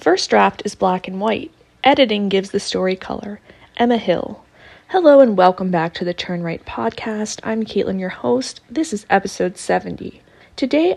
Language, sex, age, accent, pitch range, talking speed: English, female, 20-39, American, 190-235 Hz, 170 wpm